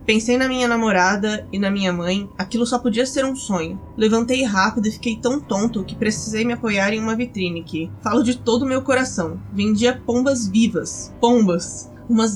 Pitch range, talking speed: 195-235 Hz, 190 wpm